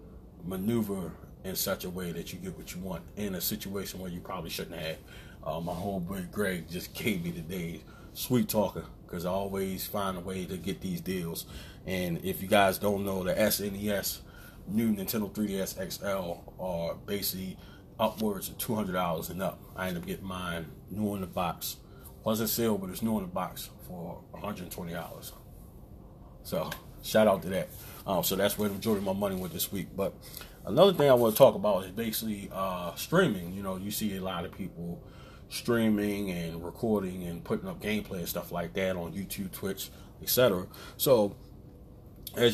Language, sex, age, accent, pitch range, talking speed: English, male, 30-49, American, 90-105 Hz, 190 wpm